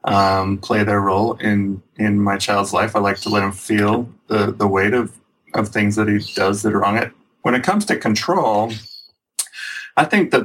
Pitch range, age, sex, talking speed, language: 100-110 Hz, 20-39, male, 205 wpm, English